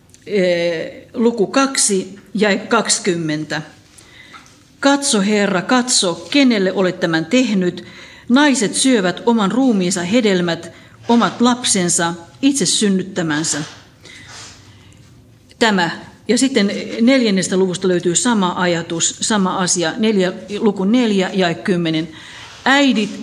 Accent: native